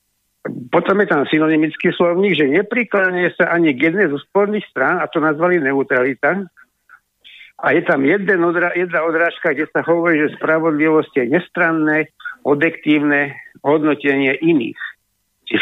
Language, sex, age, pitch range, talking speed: Slovak, male, 50-69, 145-185 Hz, 140 wpm